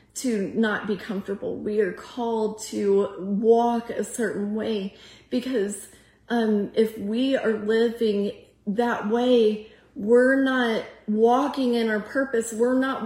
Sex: female